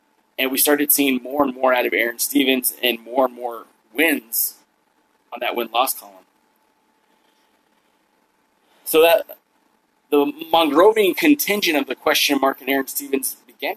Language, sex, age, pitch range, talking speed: English, male, 30-49, 130-155 Hz, 145 wpm